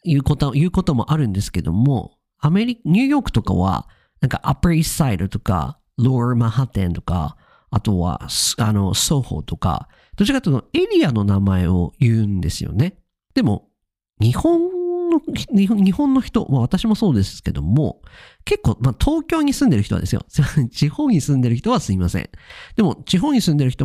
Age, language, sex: 40-59, Japanese, male